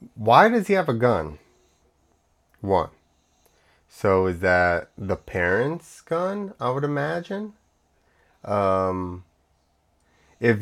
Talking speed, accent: 100 wpm, American